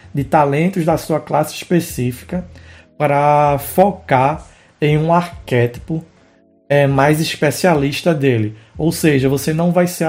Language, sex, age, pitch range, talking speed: Portuguese, male, 20-39, 125-165 Hz, 120 wpm